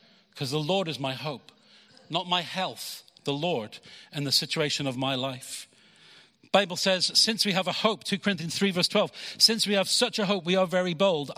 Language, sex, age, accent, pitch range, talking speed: English, male, 40-59, British, 155-210 Hz, 205 wpm